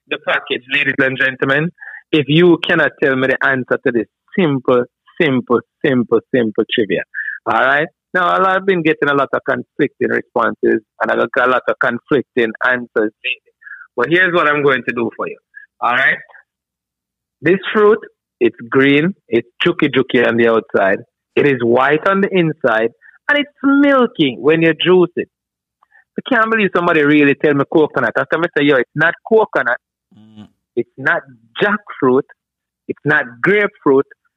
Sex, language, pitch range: male, English, 135-195 Hz